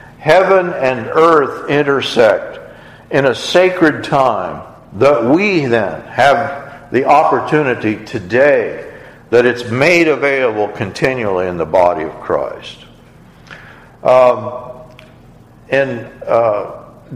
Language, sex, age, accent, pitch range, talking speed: English, male, 60-79, American, 125-160 Hz, 100 wpm